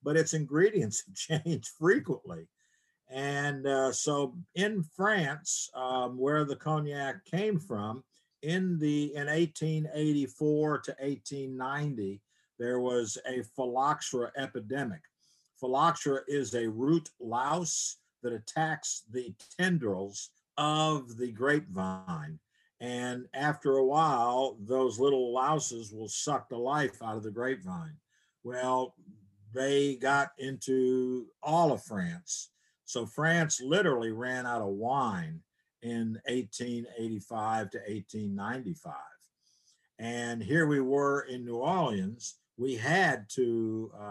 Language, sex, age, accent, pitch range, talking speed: English, male, 50-69, American, 120-155 Hz, 115 wpm